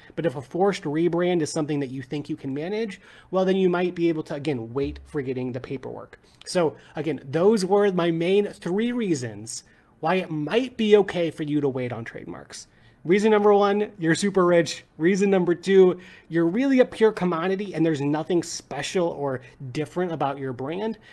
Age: 30-49